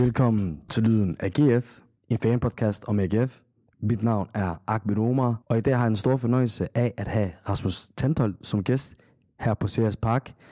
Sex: male